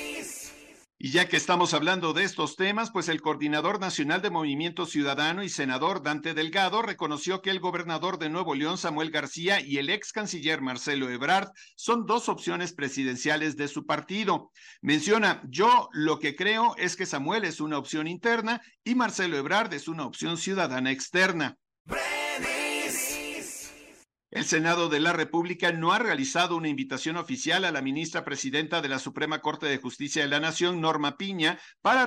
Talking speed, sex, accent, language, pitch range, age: 165 wpm, male, Mexican, Spanish, 150-190 Hz, 50-69